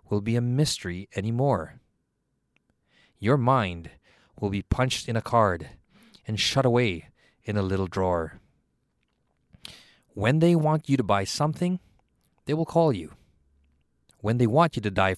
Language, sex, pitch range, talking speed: English, male, 100-130 Hz, 145 wpm